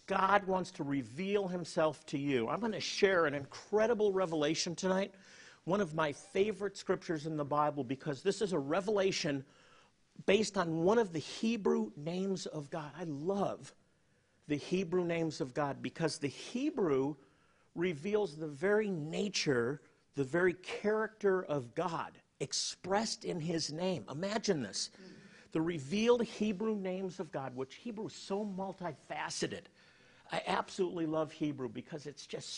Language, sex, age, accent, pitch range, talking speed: English, male, 50-69, American, 145-200 Hz, 145 wpm